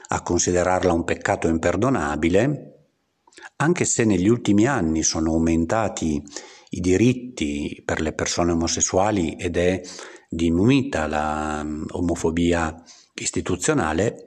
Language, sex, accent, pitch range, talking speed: Italian, male, native, 80-110 Hz, 95 wpm